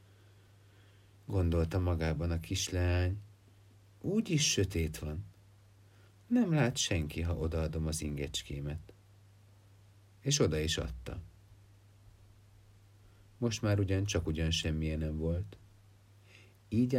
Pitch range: 90-100 Hz